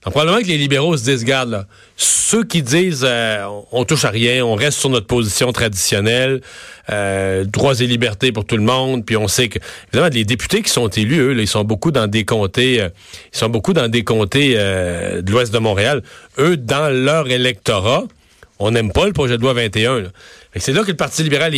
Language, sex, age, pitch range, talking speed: French, male, 40-59, 115-150 Hz, 220 wpm